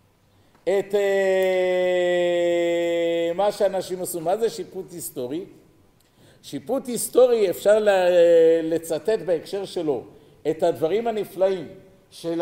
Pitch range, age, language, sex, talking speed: 165-220 Hz, 50-69, Hebrew, male, 100 wpm